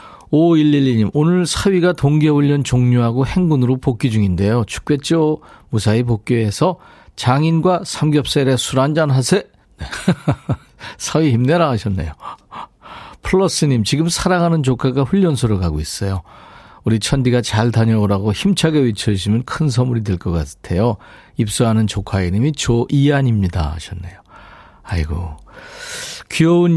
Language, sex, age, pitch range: Korean, male, 40-59, 105-150 Hz